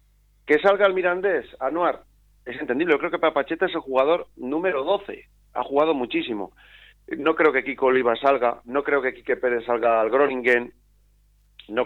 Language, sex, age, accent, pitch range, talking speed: Spanish, male, 40-59, Spanish, 120-145 Hz, 170 wpm